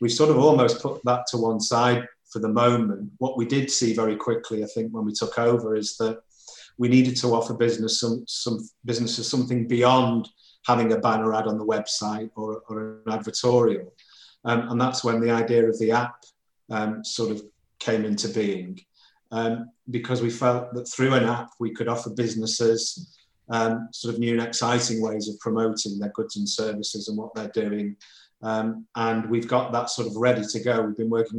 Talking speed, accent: 195 wpm, British